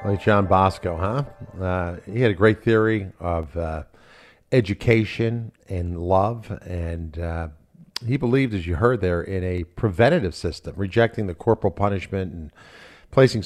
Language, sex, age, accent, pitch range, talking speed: English, male, 50-69, American, 90-115 Hz, 145 wpm